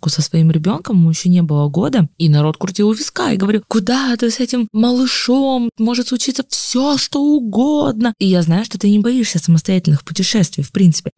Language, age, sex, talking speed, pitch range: Russian, 20-39, female, 190 wpm, 155-195 Hz